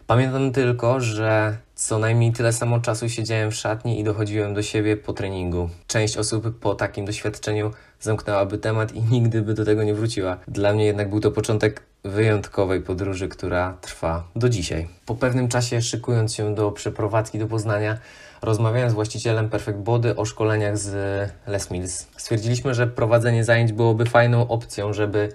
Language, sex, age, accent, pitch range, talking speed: Polish, male, 20-39, native, 100-115 Hz, 165 wpm